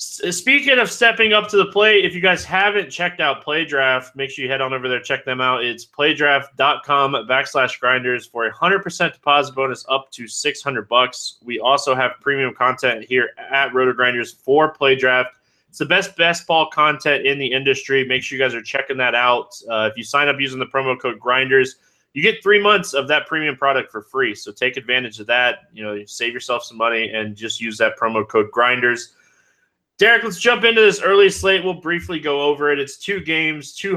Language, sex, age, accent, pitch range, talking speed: English, male, 20-39, American, 125-160 Hz, 210 wpm